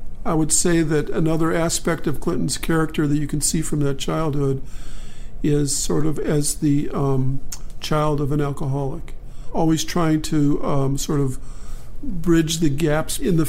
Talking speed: 165 wpm